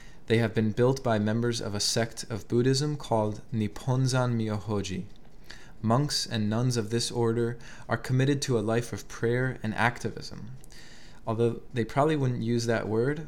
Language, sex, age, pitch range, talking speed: English, male, 20-39, 110-130 Hz, 165 wpm